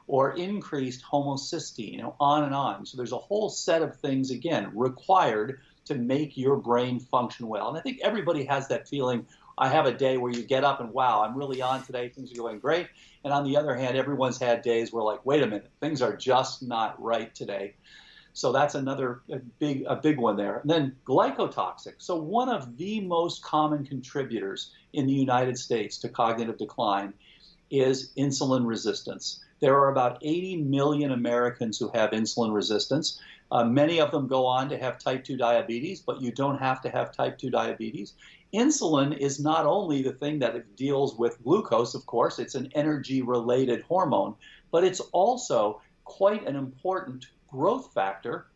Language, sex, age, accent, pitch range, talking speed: English, male, 50-69, American, 125-150 Hz, 180 wpm